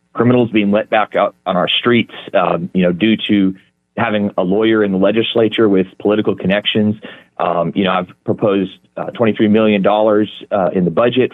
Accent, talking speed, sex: American, 185 wpm, male